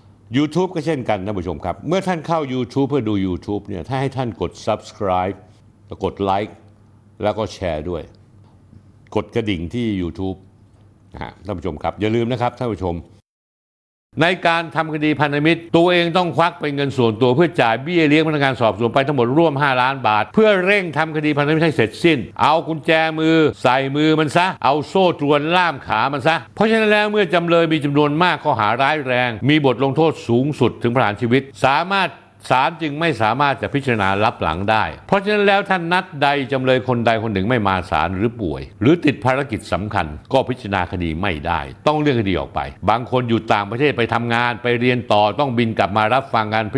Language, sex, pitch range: Thai, male, 105-150 Hz